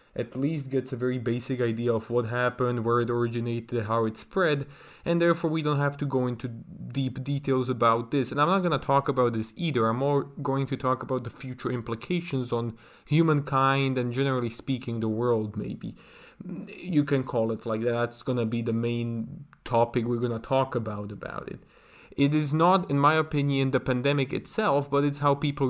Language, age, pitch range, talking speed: English, 20-39, 115-140 Hz, 205 wpm